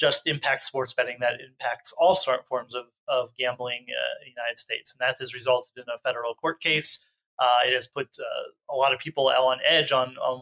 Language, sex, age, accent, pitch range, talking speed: English, male, 30-49, American, 130-155 Hz, 235 wpm